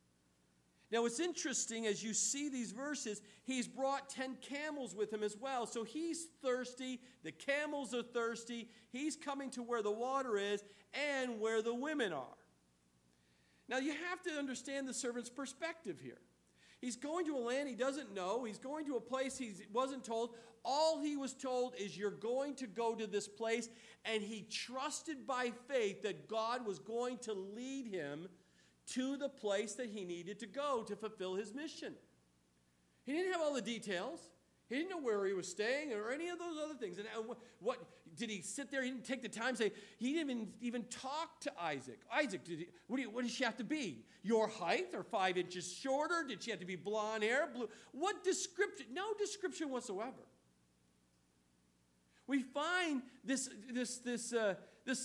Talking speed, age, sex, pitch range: 190 wpm, 50-69, male, 210-275 Hz